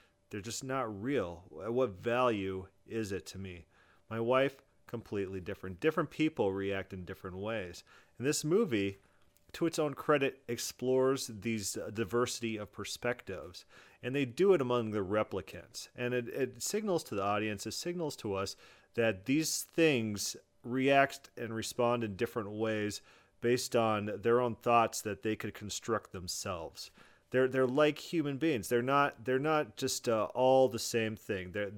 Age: 40-59